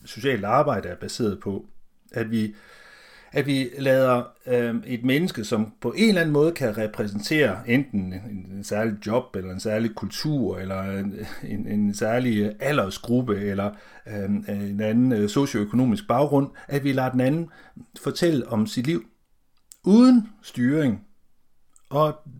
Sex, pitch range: male, 105-140 Hz